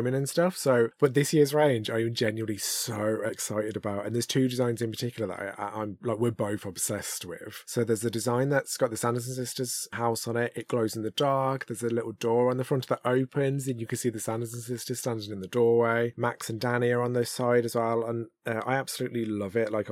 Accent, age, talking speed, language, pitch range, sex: British, 30-49, 235 wpm, English, 110-125 Hz, male